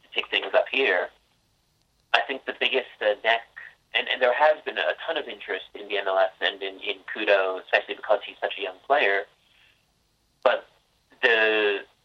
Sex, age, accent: male, 30-49, American